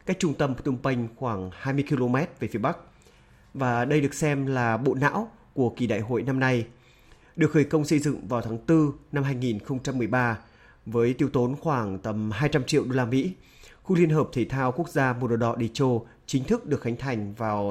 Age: 30-49